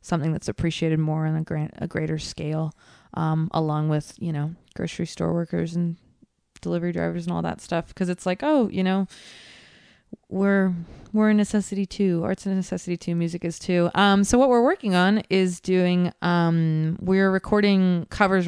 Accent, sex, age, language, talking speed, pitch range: American, female, 20-39, English, 180 wpm, 160-190 Hz